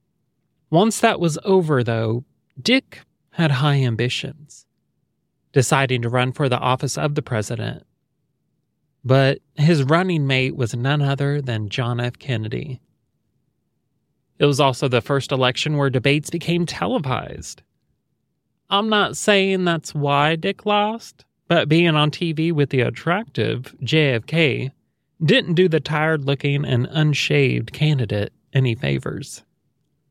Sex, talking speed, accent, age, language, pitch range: male, 125 wpm, American, 30-49, English, 130-170 Hz